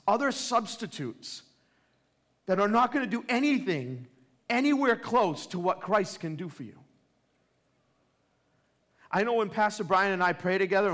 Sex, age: male, 40-59